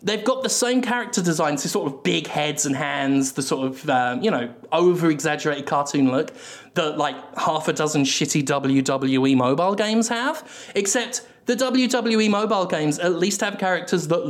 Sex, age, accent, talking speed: male, 20-39, British, 180 wpm